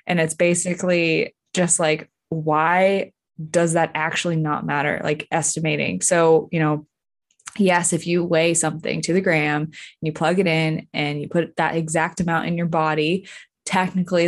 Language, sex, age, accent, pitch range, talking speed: English, female, 20-39, American, 160-190 Hz, 165 wpm